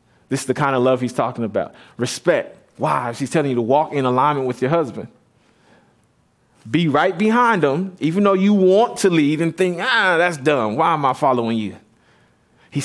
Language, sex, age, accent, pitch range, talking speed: English, male, 30-49, American, 125-170 Hz, 195 wpm